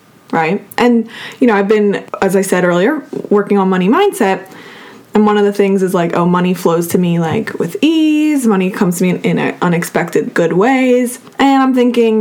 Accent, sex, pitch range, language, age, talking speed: American, female, 190-220 Hz, English, 20-39, 200 wpm